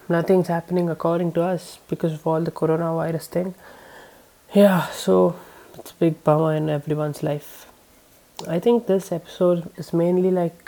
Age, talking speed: 20-39, 150 wpm